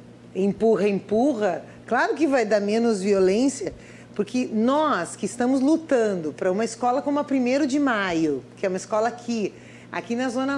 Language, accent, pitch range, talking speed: Portuguese, Brazilian, 195-275 Hz, 165 wpm